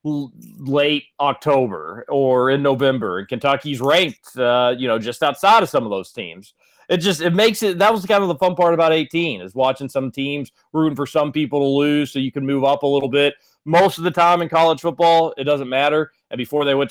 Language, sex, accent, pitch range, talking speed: English, male, American, 130-175 Hz, 225 wpm